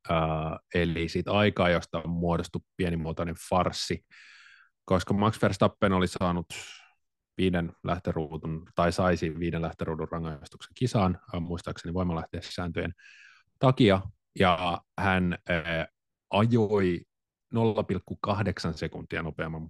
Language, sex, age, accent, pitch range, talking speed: Finnish, male, 30-49, native, 80-100 Hz, 105 wpm